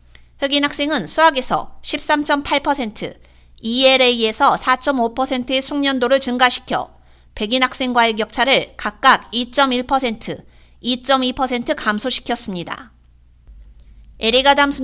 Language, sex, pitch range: Korean, female, 230-290 Hz